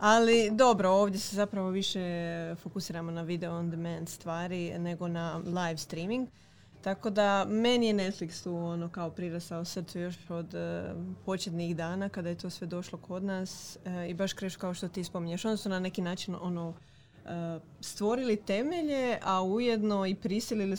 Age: 20-39